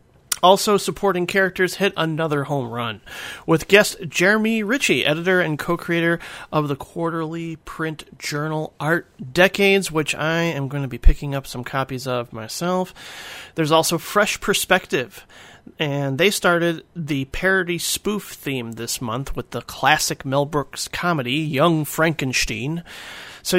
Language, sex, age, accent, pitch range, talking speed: English, male, 40-59, American, 145-195 Hz, 140 wpm